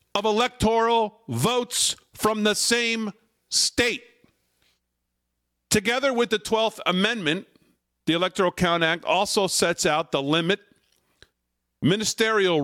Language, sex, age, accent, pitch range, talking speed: English, male, 50-69, American, 125-185 Hz, 105 wpm